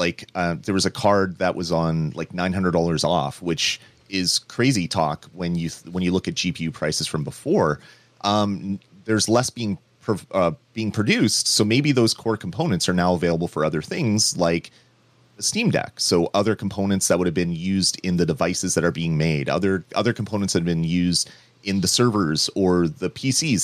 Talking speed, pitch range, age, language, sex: 195 wpm, 85-110 Hz, 30-49, English, male